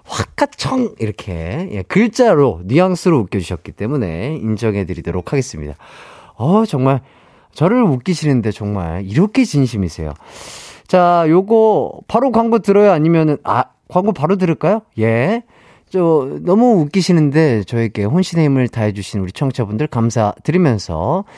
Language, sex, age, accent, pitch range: Korean, male, 30-49, native, 110-185 Hz